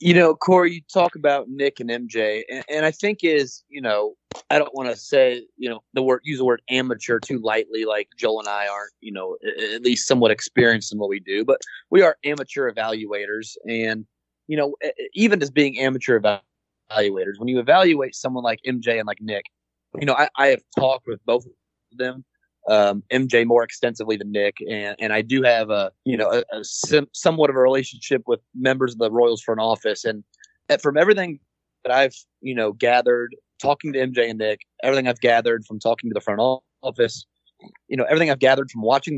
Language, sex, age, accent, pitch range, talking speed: English, male, 30-49, American, 110-145 Hz, 205 wpm